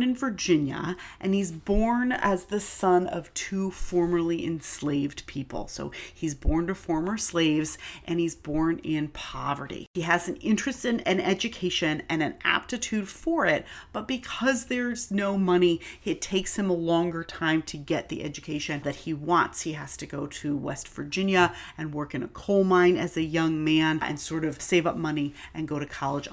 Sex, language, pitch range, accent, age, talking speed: female, English, 155-195 Hz, American, 30-49, 185 wpm